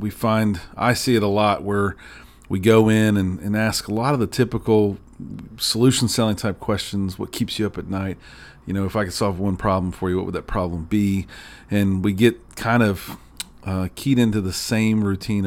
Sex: male